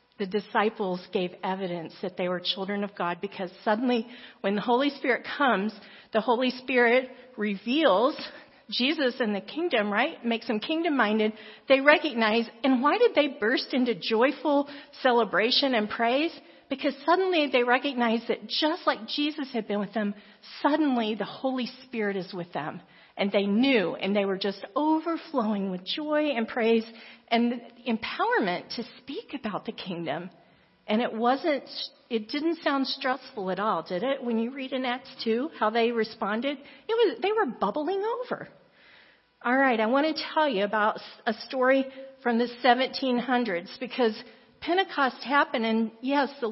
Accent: American